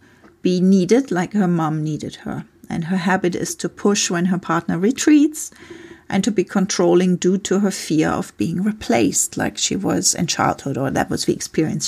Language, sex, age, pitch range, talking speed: English, female, 40-59, 175-220 Hz, 190 wpm